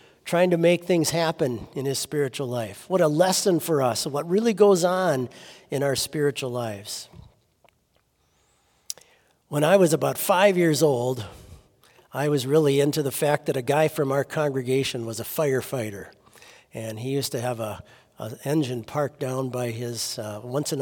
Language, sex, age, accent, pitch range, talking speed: English, male, 50-69, American, 135-185 Hz, 170 wpm